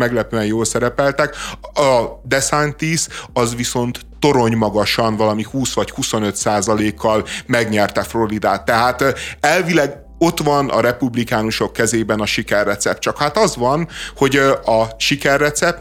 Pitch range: 115-140 Hz